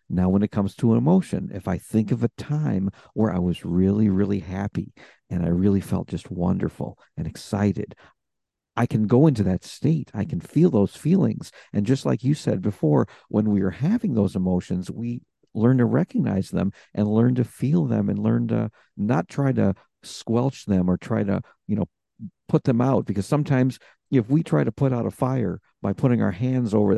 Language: English